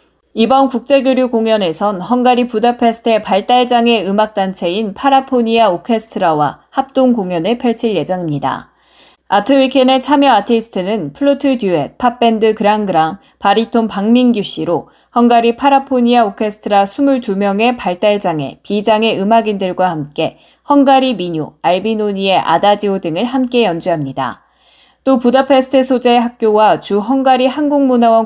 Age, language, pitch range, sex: 10-29, Korean, 190-245 Hz, female